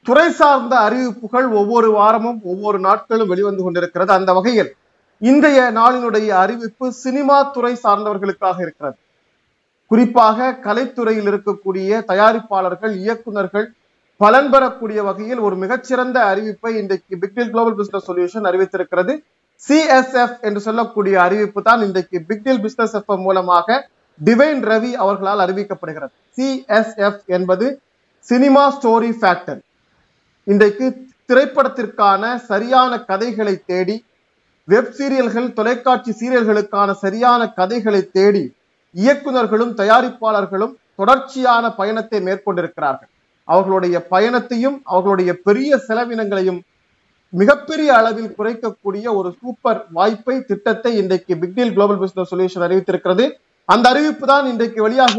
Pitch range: 195-245 Hz